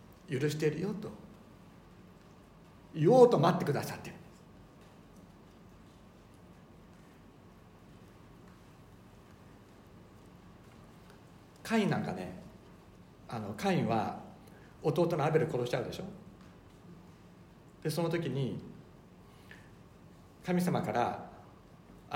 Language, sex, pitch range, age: Japanese, male, 110-160 Hz, 60-79